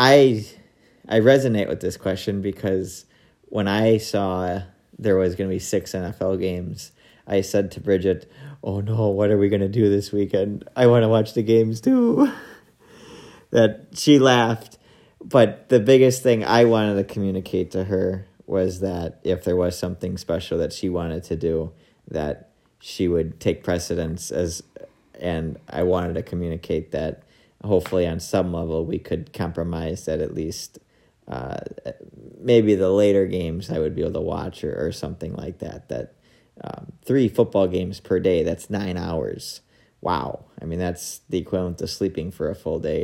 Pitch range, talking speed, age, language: 90-110 Hz, 175 wpm, 40-59, English